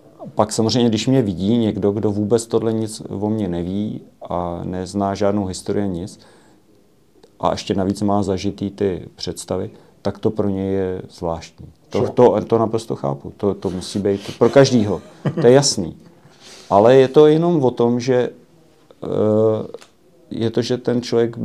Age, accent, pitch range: 40-59, native, 95-115 Hz